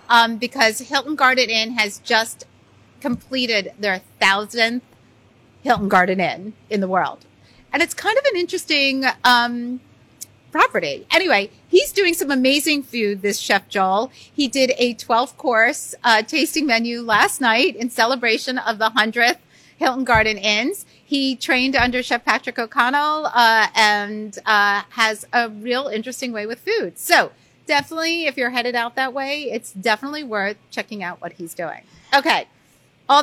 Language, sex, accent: English, female, American